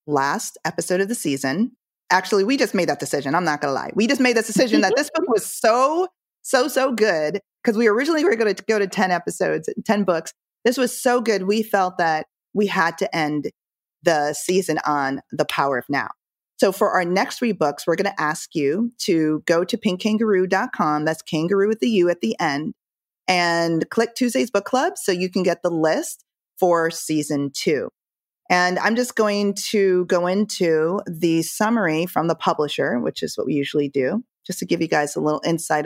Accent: American